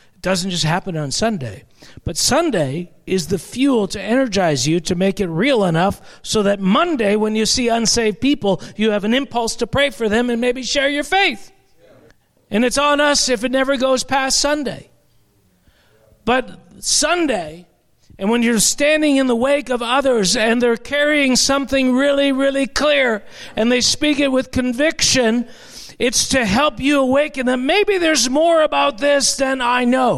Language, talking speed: English, 175 wpm